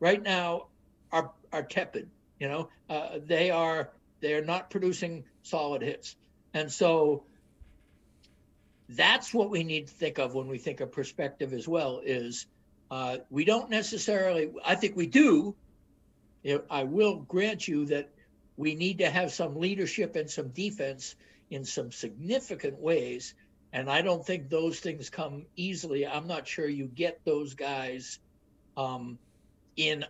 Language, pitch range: English, 125-180 Hz